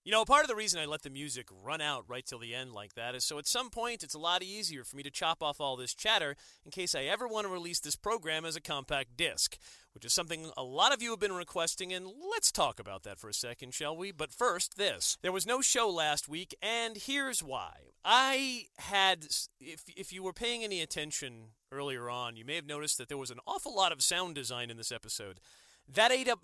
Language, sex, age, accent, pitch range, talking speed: English, male, 40-59, American, 130-190 Hz, 250 wpm